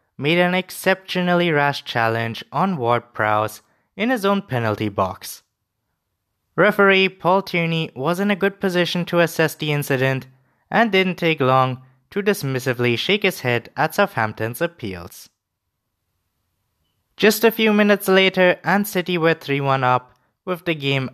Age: 20-39